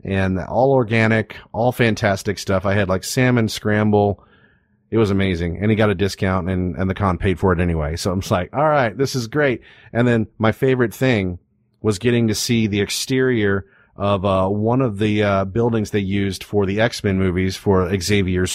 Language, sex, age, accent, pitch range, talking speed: English, male, 30-49, American, 95-115 Hz, 200 wpm